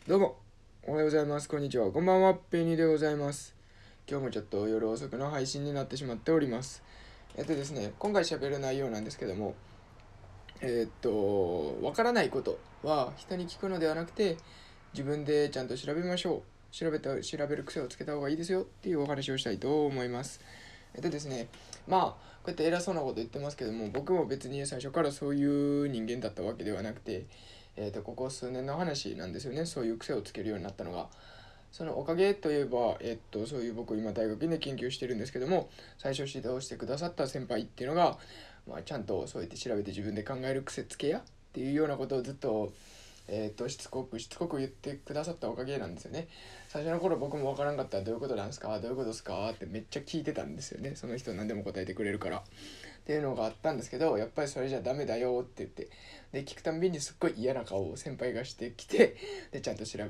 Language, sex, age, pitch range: Japanese, male, 20-39, 110-150 Hz